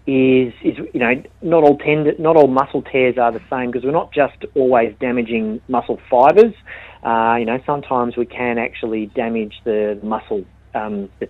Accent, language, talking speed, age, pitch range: Australian, English, 180 wpm, 30-49, 110-135 Hz